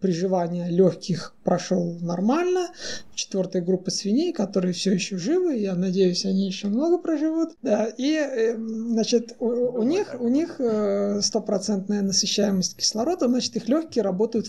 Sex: male